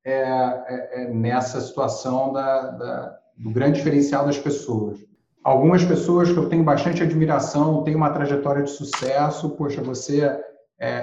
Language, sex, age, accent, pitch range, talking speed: Portuguese, male, 40-59, Brazilian, 130-160 Hz, 145 wpm